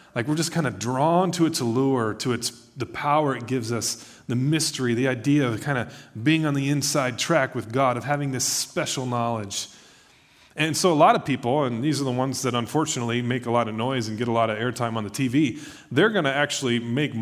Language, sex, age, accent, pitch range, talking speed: English, male, 30-49, American, 115-155 Hz, 235 wpm